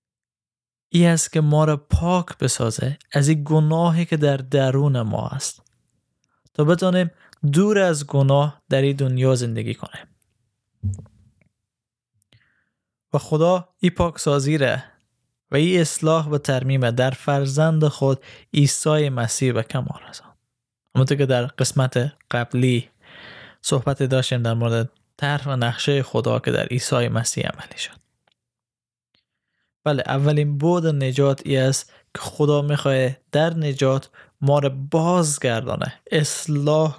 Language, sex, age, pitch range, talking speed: Persian, male, 20-39, 125-155 Hz, 125 wpm